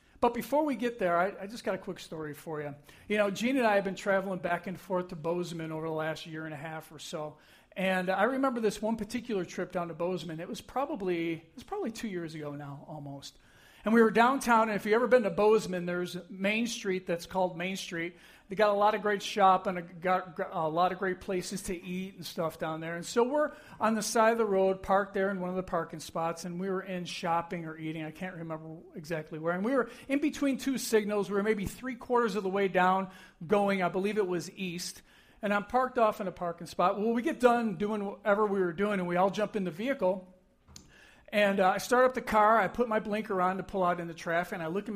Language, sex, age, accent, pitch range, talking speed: English, male, 50-69, American, 175-215 Hz, 255 wpm